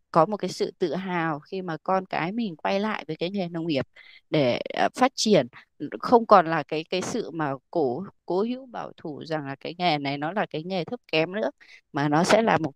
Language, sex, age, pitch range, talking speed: Vietnamese, female, 20-39, 155-195 Hz, 235 wpm